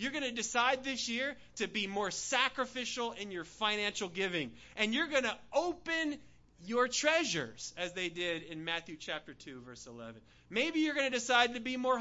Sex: male